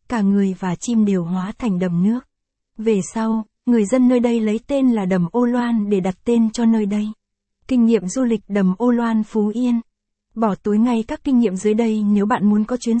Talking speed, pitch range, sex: 225 wpm, 205-235 Hz, female